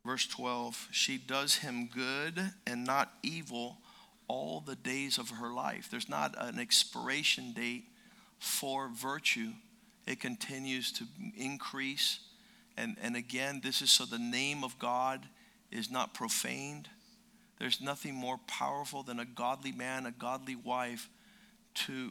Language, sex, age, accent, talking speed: English, male, 50-69, American, 140 wpm